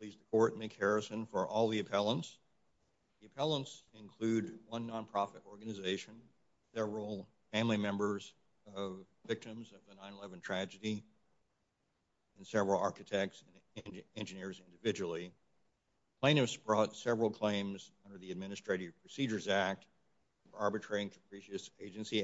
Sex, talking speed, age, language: male, 120 wpm, 50-69, English